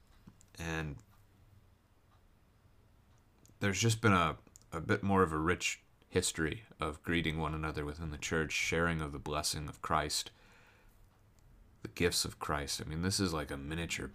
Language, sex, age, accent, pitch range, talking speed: English, male, 30-49, American, 85-105 Hz, 155 wpm